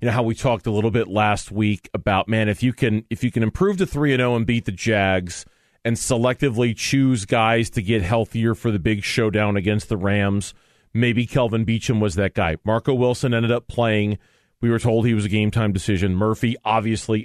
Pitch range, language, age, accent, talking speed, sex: 105-125 Hz, English, 40-59, American, 220 wpm, male